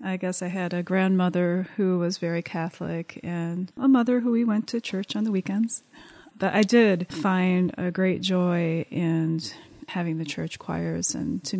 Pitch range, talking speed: 175-205 Hz, 180 wpm